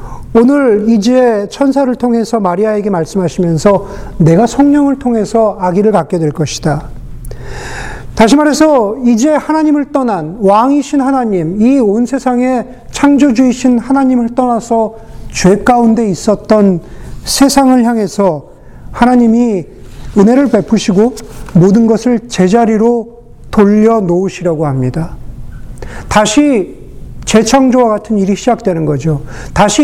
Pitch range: 175-245 Hz